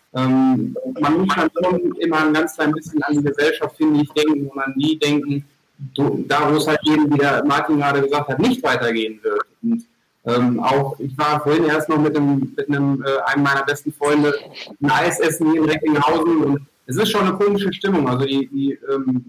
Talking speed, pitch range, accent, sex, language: 215 wpm, 140-155 Hz, German, male, German